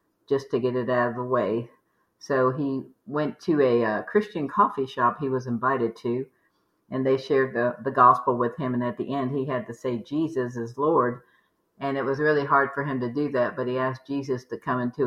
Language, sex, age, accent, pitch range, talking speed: English, female, 50-69, American, 120-140 Hz, 225 wpm